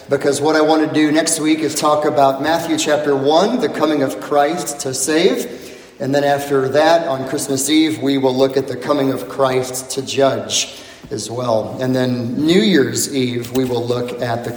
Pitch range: 130-160 Hz